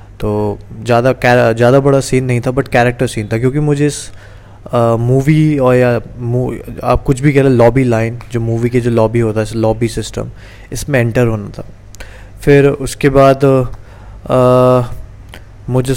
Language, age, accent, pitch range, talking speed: Hindi, 20-39, native, 110-125 Hz, 160 wpm